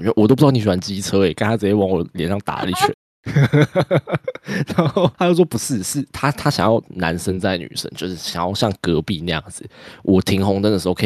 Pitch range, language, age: 90-125 Hz, Chinese, 20-39